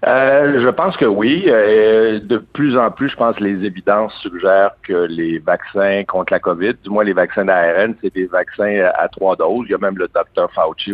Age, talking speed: 60-79, 220 wpm